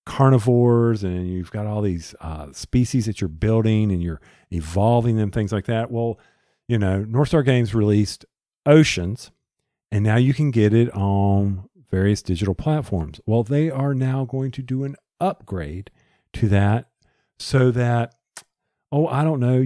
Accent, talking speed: American, 160 wpm